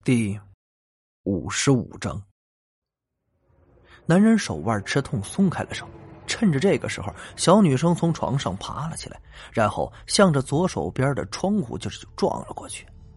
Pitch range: 100-145 Hz